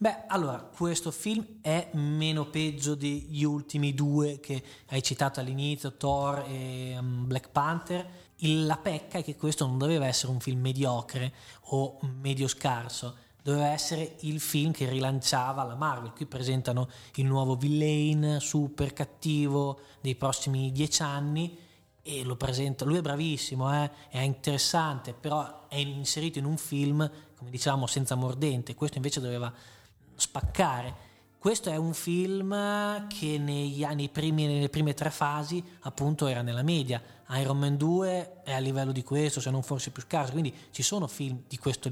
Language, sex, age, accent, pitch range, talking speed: Italian, male, 20-39, native, 130-150 Hz, 160 wpm